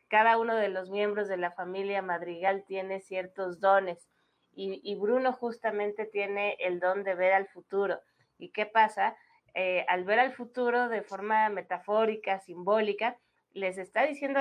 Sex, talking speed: female, 160 wpm